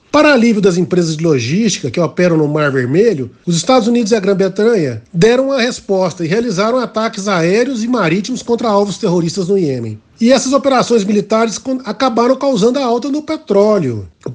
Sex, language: male, Portuguese